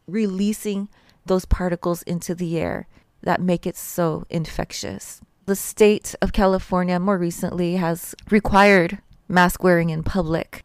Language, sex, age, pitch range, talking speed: English, female, 30-49, 180-205 Hz, 130 wpm